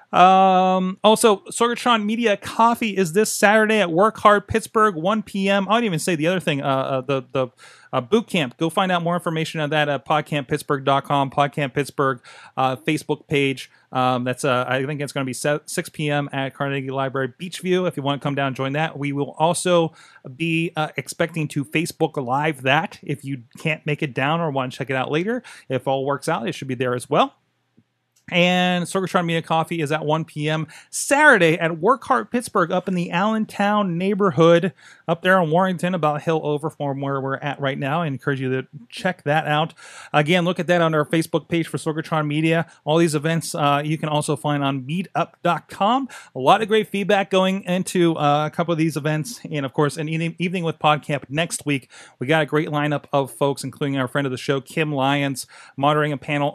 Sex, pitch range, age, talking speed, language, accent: male, 140-185 Hz, 30-49, 210 wpm, English, American